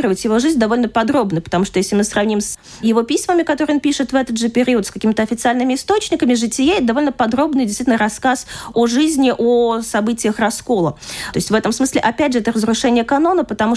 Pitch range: 195-250 Hz